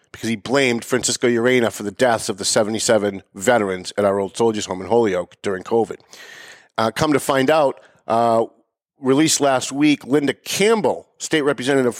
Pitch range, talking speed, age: 115-160 Hz, 170 wpm, 50-69